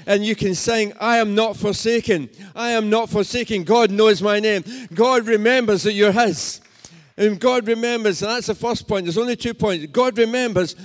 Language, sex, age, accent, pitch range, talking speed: English, male, 50-69, British, 185-220 Hz, 195 wpm